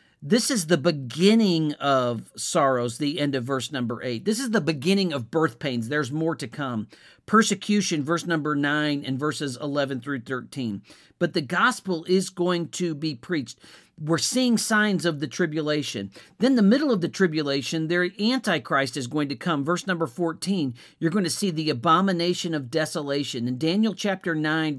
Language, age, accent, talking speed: English, 50-69, American, 175 wpm